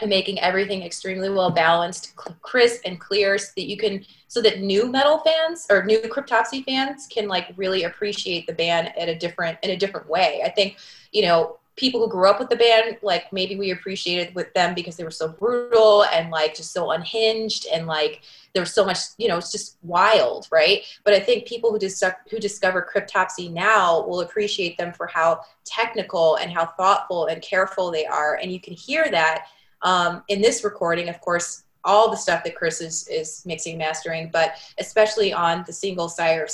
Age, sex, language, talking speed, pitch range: 20-39, female, English, 205 wpm, 165-205 Hz